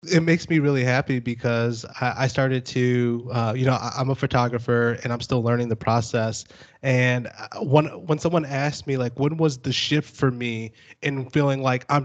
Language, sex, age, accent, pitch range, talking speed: English, male, 20-39, American, 120-155 Hz, 200 wpm